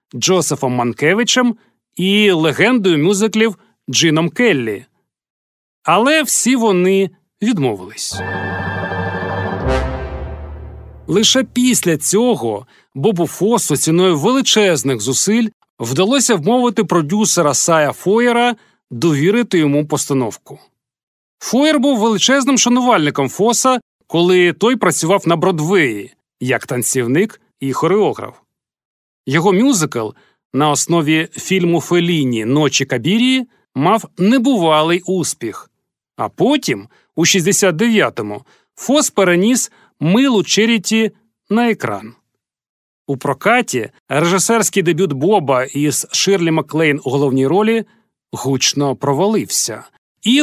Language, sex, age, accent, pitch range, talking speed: Ukrainian, male, 40-59, native, 140-225 Hz, 90 wpm